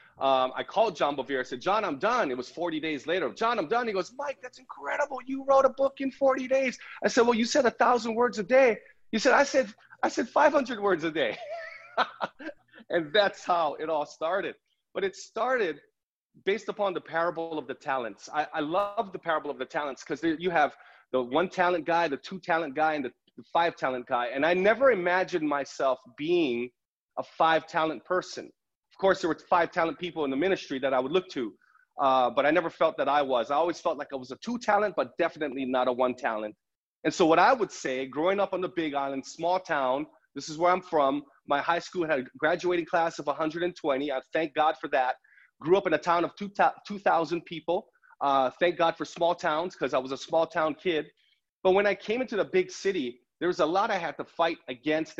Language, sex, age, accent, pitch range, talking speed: English, male, 30-49, American, 145-210 Hz, 225 wpm